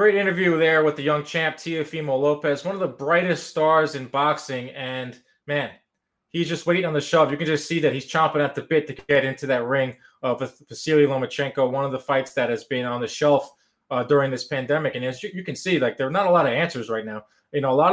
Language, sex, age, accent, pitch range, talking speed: English, male, 20-39, American, 130-155 Hz, 255 wpm